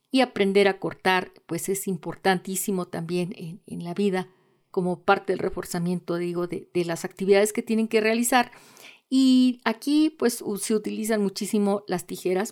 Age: 40-59